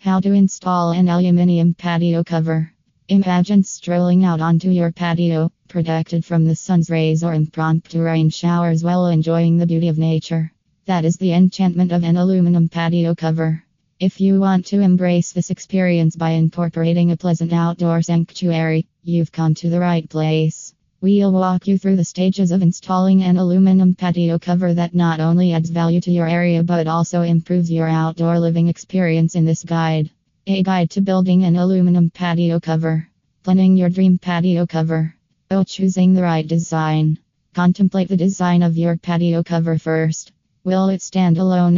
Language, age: English, 20-39